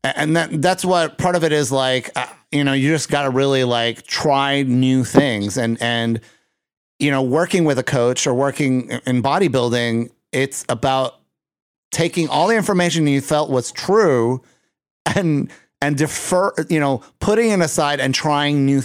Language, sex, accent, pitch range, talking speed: English, male, American, 125-150 Hz, 170 wpm